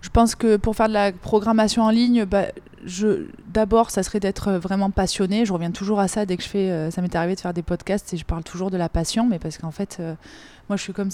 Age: 20-39